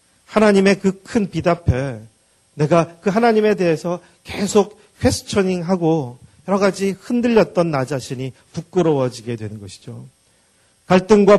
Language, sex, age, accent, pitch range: Korean, male, 40-59, native, 120-175 Hz